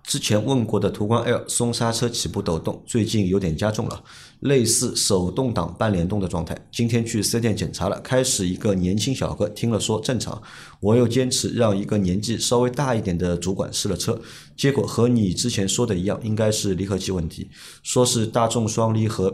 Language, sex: Chinese, male